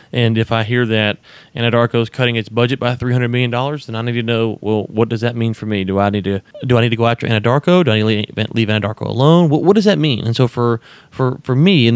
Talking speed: 280 wpm